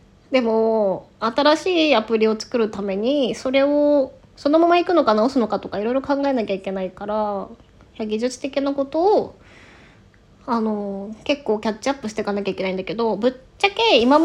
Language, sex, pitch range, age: Japanese, female, 195-275 Hz, 20-39